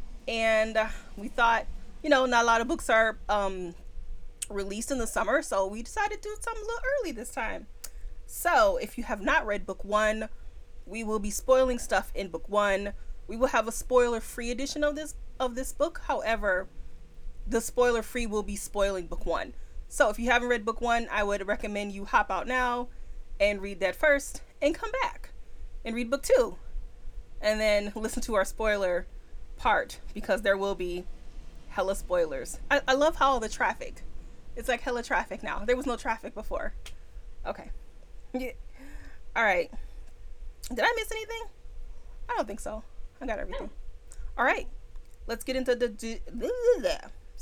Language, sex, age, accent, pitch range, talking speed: English, female, 20-39, American, 205-275 Hz, 185 wpm